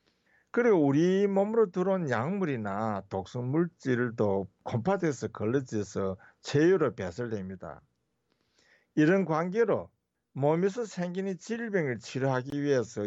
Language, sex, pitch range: Korean, male, 110-165 Hz